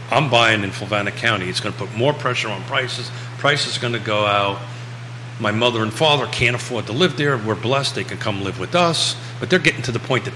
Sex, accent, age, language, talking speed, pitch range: male, American, 40-59, English, 250 wpm, 105-125 Hz